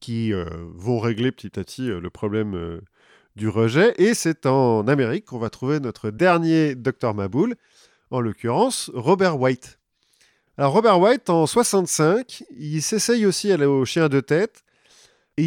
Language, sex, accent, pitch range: French, male, French, 115-180 Hz